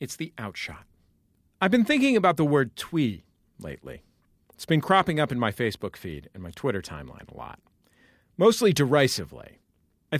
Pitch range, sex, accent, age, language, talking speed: 125-190 Hz, male, American, 40-59, English, 165 wpm